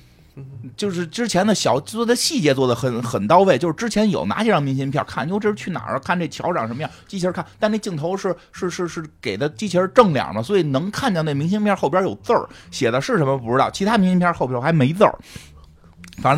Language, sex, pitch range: Chinese, male, 105-155 Hz